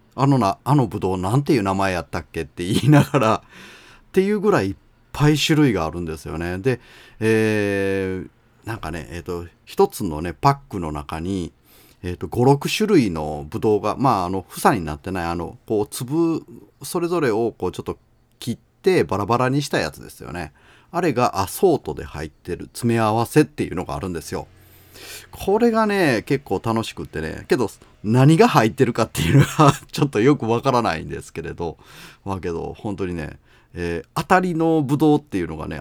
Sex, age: male, 30-49